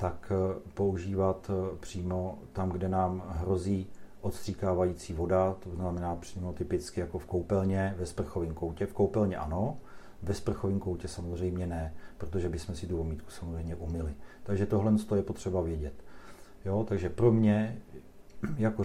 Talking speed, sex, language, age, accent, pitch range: 140 wpm, male, Czech, 40-59, native, 90-100 Hz